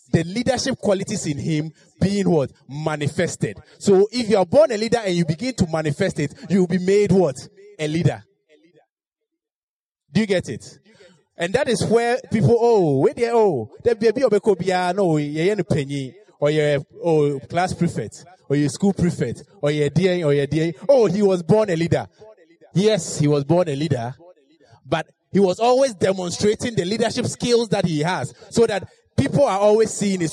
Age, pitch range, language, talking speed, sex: 30-49, 165-220 Hz, English, 190 wpm, male